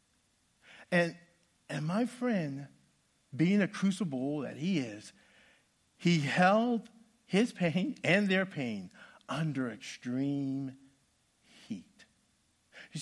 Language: English